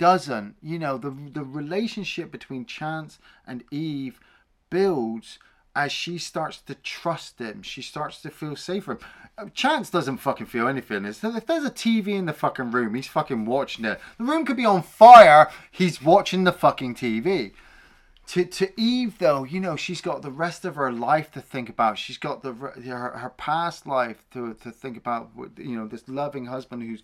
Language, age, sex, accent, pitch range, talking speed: English, 30-49, male, British, 115-160 Hz, 185 wpm